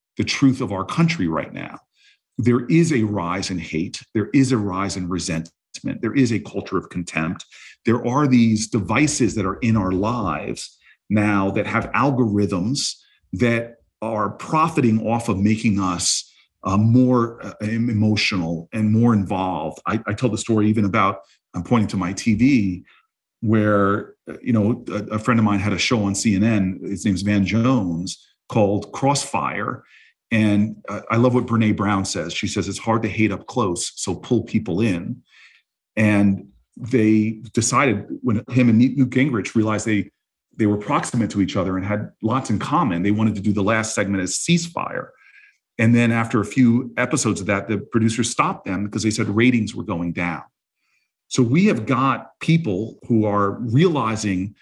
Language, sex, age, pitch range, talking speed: English, male, 40-59, 100-125 Hz, 175 wpm